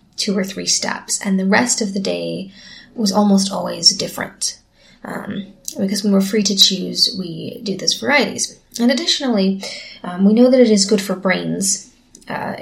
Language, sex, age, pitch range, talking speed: English, female, 20-39, 190-220 Hz, 175 wpm